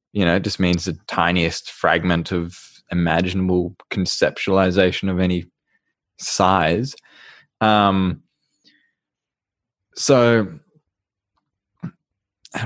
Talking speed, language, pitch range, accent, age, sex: 80 wpm, English, 90-110 Hz, Australian, 20-39, male